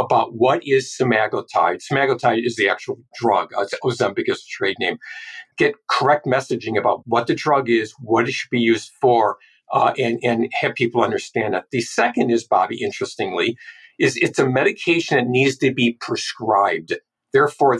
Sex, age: male, 50-69